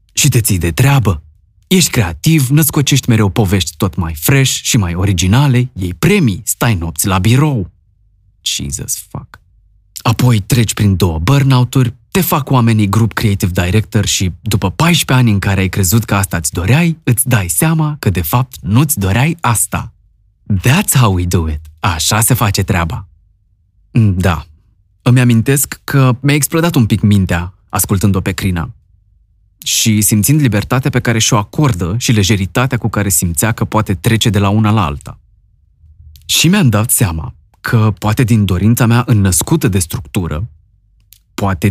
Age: 20-39